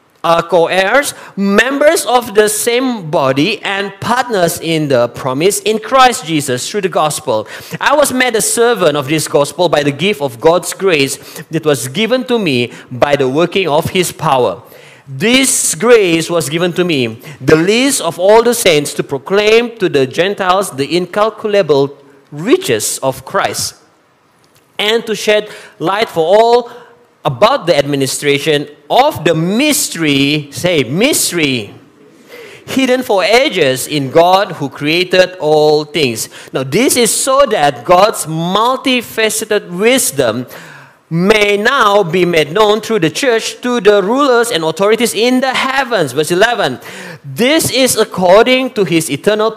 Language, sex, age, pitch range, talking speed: English, male, 40-59, 150-230 Hz, 145 wpm